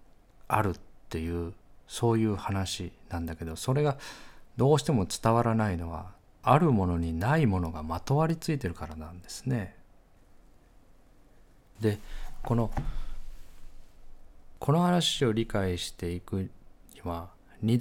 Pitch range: 85-115 Hz